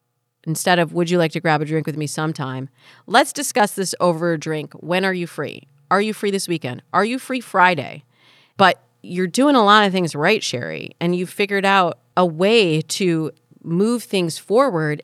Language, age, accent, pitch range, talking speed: English, 40-59, American, 150-200 Hz, 200 wpm